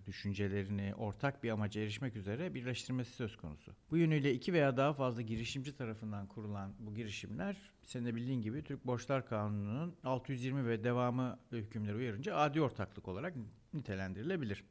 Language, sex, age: Turkish, male, 60-79